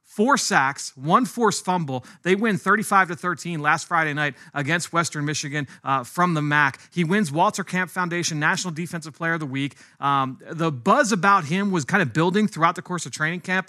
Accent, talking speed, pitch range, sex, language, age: American, 195 wpm, 155-195 Hz, male, English, 30-49